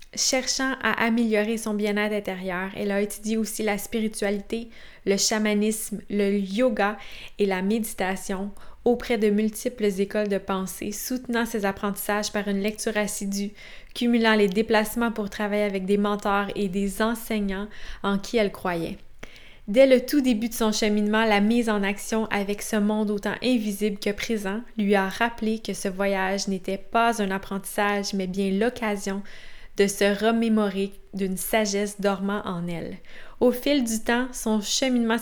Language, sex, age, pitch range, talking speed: French, female, 20-39, 200-225 Hz, 155 wpm